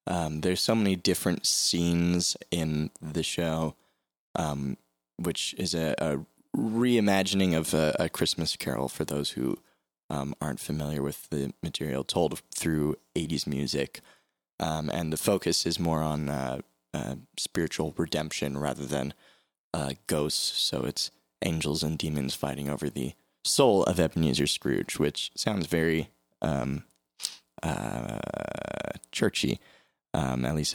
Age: 20-39